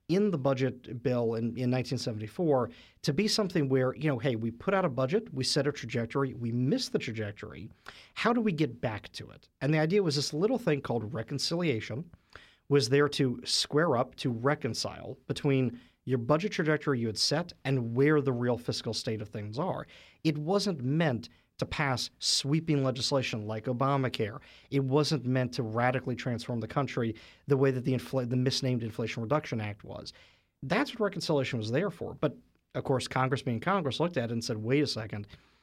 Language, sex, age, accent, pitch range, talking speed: English, male, 40-59, American, 115-150 Hz, 190 wpm